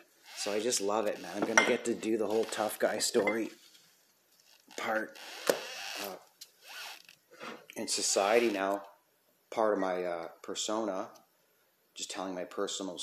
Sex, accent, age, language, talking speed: male, American, 30-49, English, 145 wpm